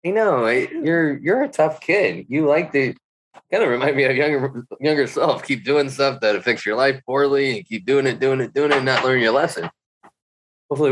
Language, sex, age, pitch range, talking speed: English, male, 20-39, 120-185 Hz, 225 wpm